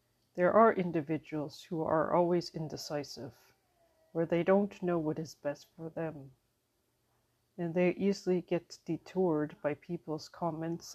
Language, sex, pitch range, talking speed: English, female, 150-180 Hz, 130 wpm